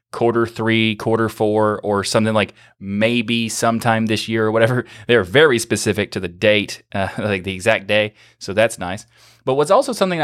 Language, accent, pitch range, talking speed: English, American, 105-125 Hz, 180 wpm